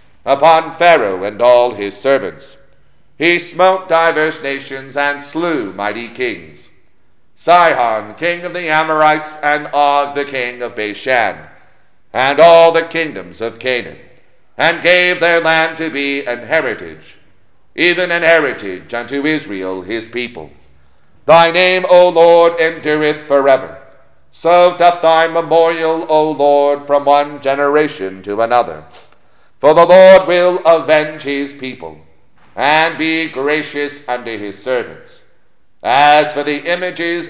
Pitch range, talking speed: 125-165 Hz, 130 wpm